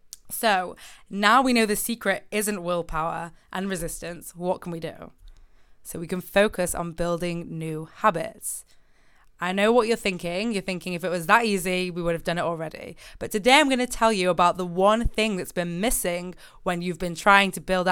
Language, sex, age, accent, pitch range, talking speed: English, female, 20-39, British, 175-215 Hz, 200 wpm